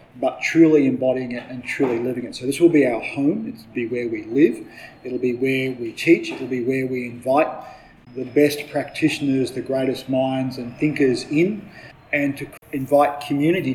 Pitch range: 125-145 Hz